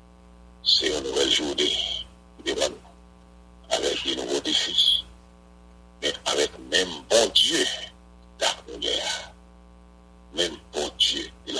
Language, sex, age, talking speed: English, male, 60-79, 105 wpm